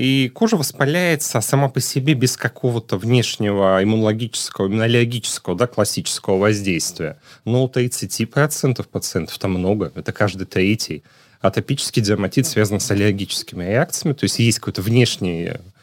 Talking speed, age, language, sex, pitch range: 130 wpm, 30-49, Russian, male, 110-150 Hz